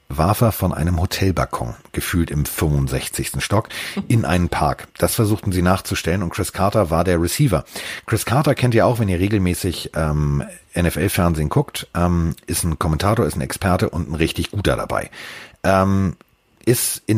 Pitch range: 75-100 Hz